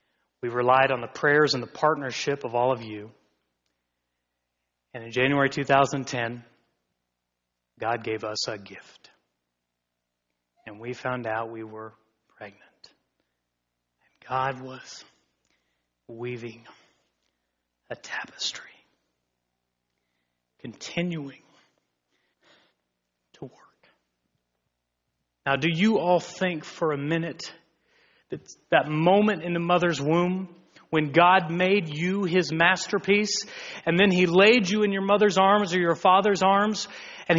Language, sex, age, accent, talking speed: English, male, 30-49, American, 115 wpm